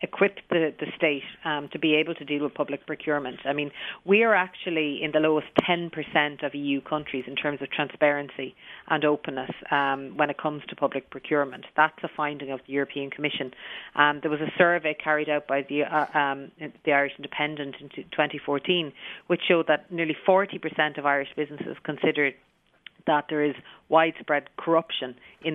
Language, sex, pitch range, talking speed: English, female, 140-160 Hz, 180 wpm